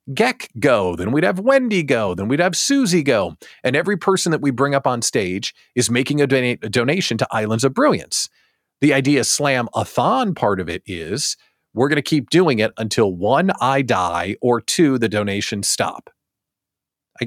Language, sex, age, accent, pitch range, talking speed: English, male, 40-59, American, 100-140 Hz, 185 wpm